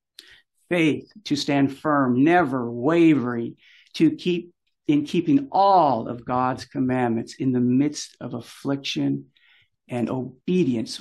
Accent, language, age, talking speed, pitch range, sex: American, English, 60-79, 115 wpm, 120-150 Hz, male